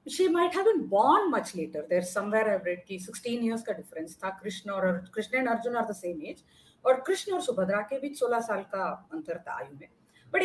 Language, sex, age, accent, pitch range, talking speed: Hindi, female, 30-49, native, 200-290 Hz, 225 wpm